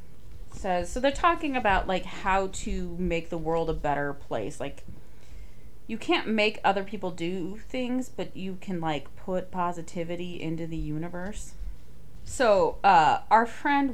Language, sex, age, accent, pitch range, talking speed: English, female, 30-49, American, 160-200 Hz, 150 wpm